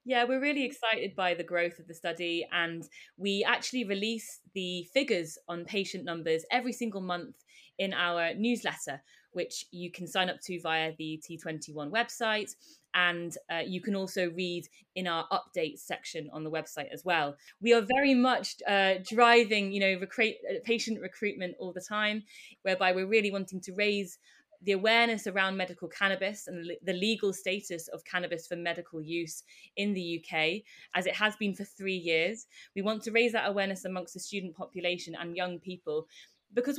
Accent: British